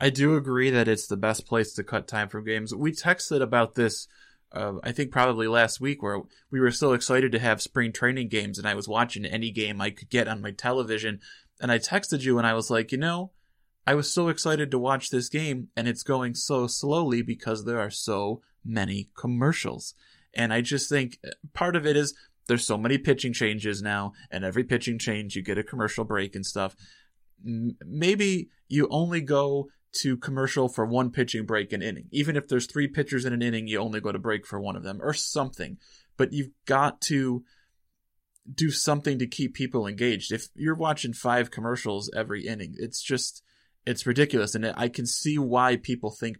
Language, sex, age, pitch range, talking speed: English, male, 20-39, 110-140 Hz, 205 wpm